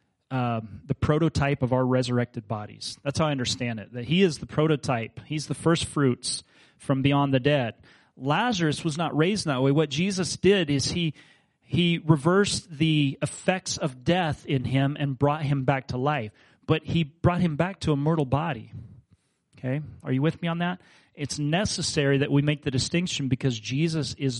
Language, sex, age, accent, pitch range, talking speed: English, male, 30-49, American, 125-150 Hz, 185 wpm